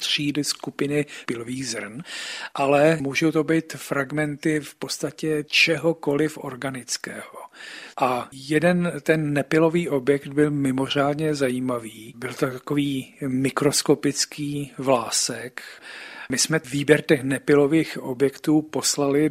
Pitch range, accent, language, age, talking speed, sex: 130-150 Hz, native, Czech, 40-59, 105 wpm, male